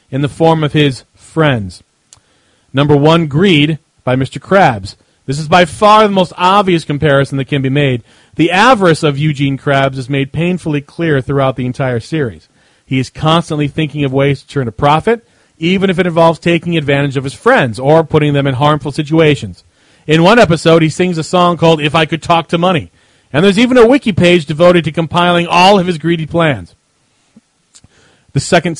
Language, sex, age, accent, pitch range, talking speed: English, male, 40-59, American, 135-170 Hz, 190 wpm